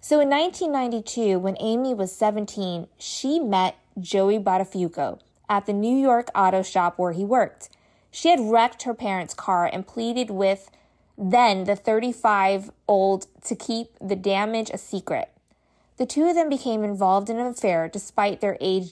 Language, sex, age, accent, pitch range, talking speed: English, female, 20-39, American, 195-245 Hz, 160 wpm